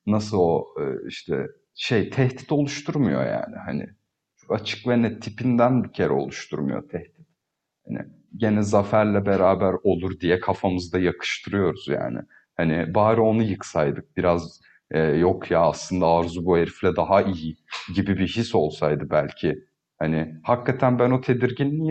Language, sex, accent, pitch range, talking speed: Turkish, male, native, 90-125 Hz, 135 wpm